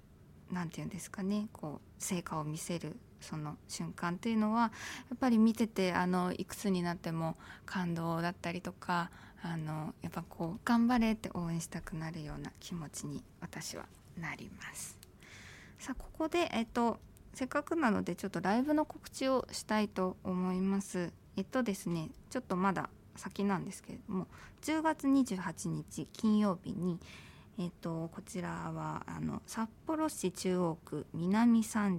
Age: 20-39